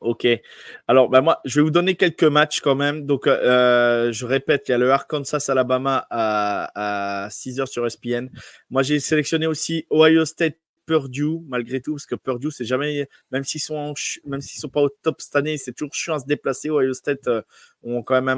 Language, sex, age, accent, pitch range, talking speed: French, male, 20-39, French, 130-160 Hz, 210 wpm